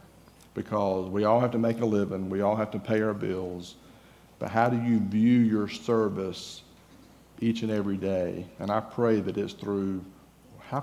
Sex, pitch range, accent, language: male, 100-115 Hz, American, English